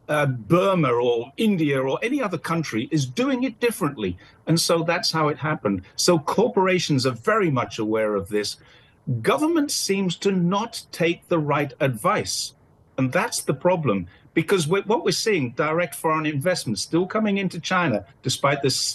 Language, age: English, 50-69